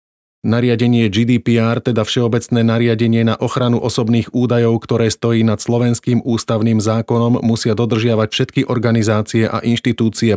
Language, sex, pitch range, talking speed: Slovak, male, 110-120 Hz, 120 wpm